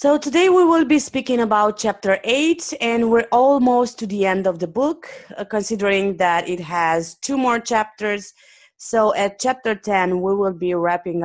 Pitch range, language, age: 170-250 Hz, English, 20-39